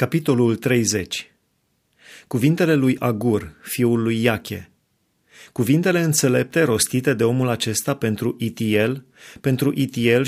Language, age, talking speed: Romanian, 30-49, 105 wpm